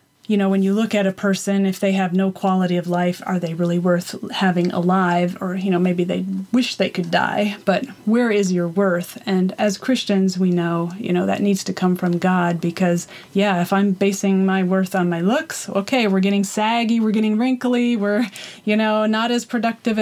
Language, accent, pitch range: English, American, 185-215 Hz